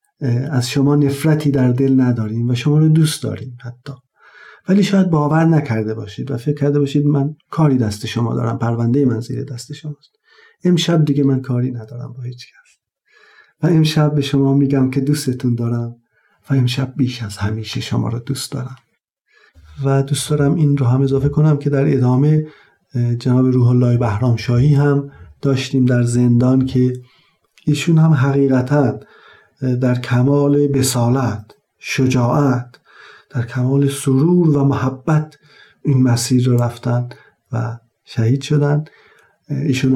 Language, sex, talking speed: Persian, male, 145 wpm